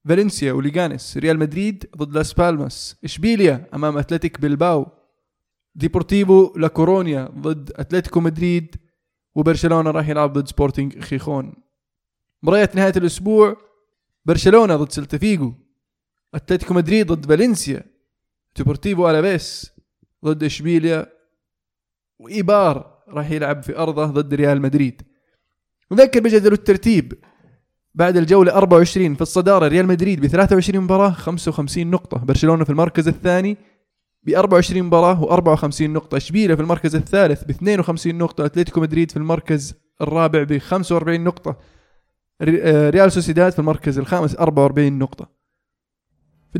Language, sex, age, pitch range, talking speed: Arabic, male, 20-39, 145-185 Hz, 115 wpm